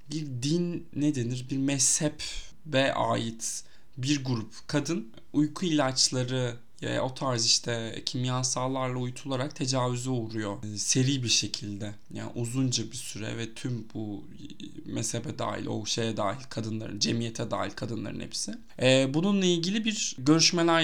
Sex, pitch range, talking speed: male, 120-165 Hz, 130 wpm